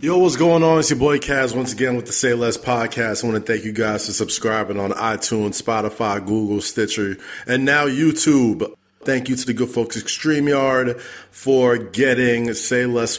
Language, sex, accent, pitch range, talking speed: English, male, American, 110-130 Hz, 200 wpm